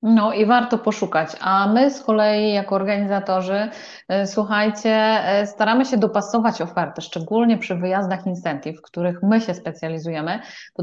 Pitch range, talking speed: 180-235 Hz, 140 wpm